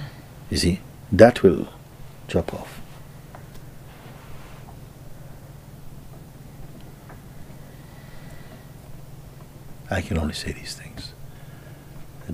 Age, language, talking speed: 60-79, English, 65 wpm